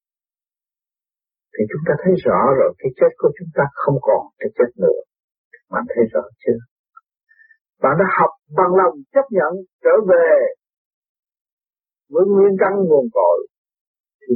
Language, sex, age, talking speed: Vietnamese, male, 50-69, 145 wpm